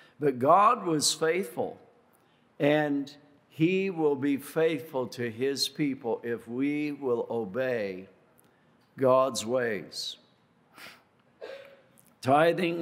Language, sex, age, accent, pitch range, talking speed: English, male, 60-79, American, 125-150 Hz, 90 wpm